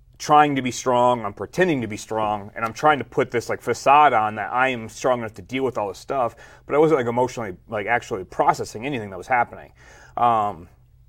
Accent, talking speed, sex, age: American, 225 wpm, male, 30-49